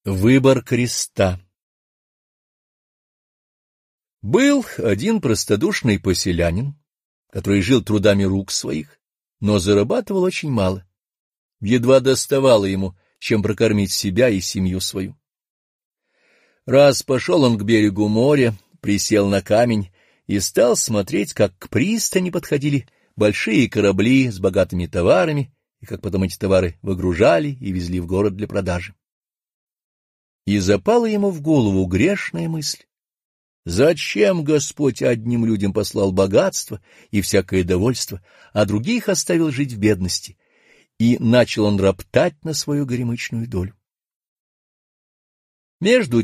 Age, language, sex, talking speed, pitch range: 50-69, Russian, male, 115 wpm, 95-140 Hz